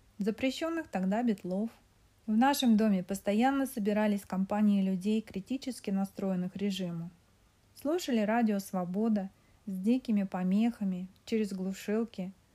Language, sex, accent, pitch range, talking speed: Russian, female, native, 190-245 Hz, 100 wpm